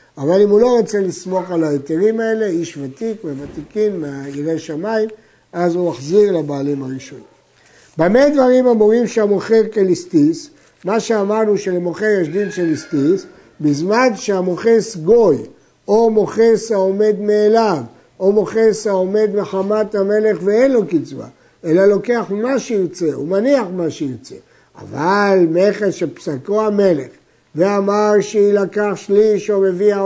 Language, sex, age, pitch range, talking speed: Hebrew, male, 60-79, 175-220 Hz, 130 wpm